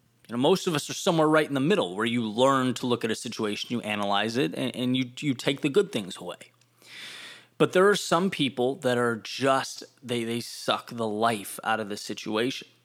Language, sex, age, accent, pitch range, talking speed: English, male, 20-39, American, 120-140 Hz, 225 wpm